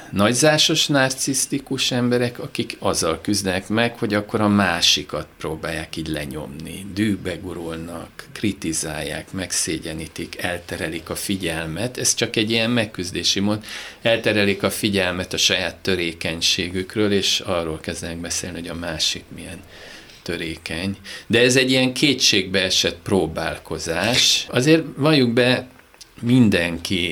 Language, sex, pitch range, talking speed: Hungarian, male, 85-105 Hz, 115 wpm